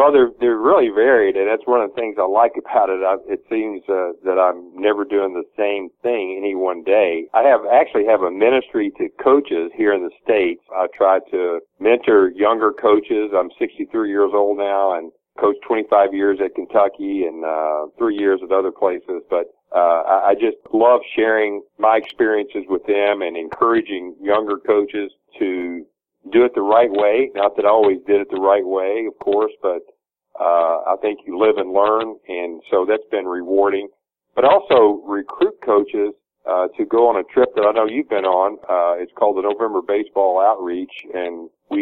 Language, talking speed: English, 190 wpm